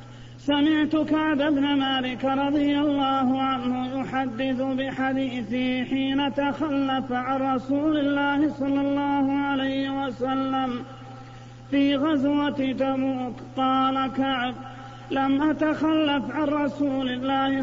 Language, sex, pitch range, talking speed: Arabic, male, 265-285 Hz, 95 wpm